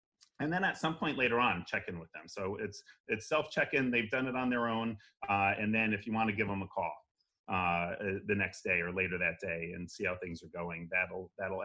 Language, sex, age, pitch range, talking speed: English, male, 30-49, 100-120 Hz, 260 wpm